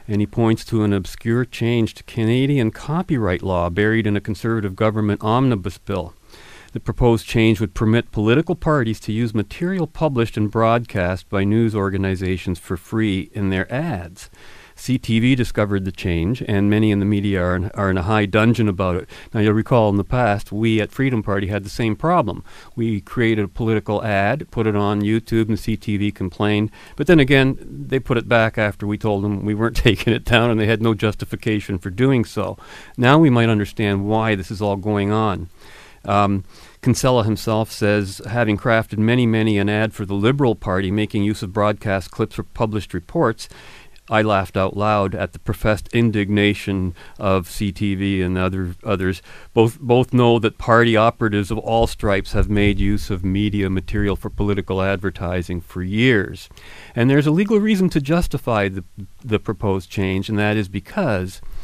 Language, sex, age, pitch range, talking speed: English, male, 40-59, 100-115 Hz, 180 wpm